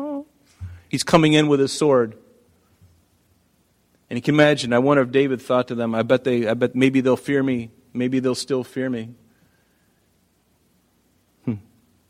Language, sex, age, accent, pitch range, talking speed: English, male, 40-59, American, 120-170 Hz, 160 wpm